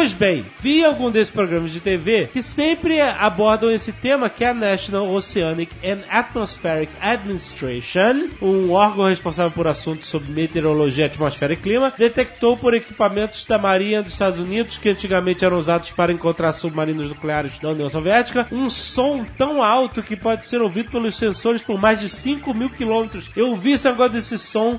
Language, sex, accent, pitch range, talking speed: Portuguese, male, Brazilian, 185-235 Hz, 170 wpm